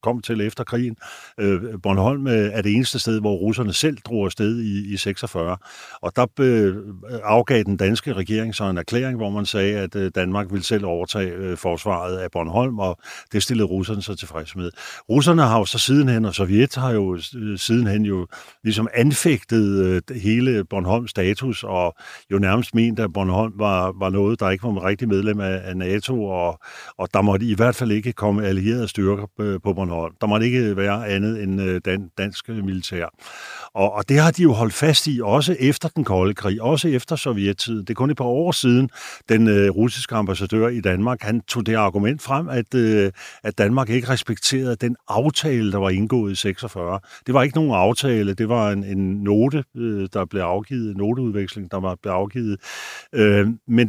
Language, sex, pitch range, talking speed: Danish, male, 100-125 Hz, 175 wpm